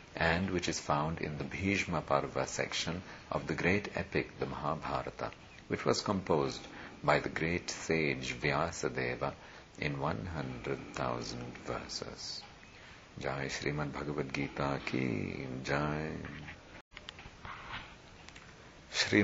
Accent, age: native, 50-69